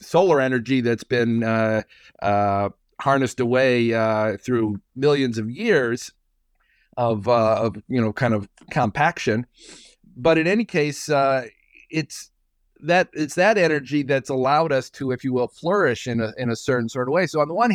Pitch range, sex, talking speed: 115-150 Hz, male, 170 wpm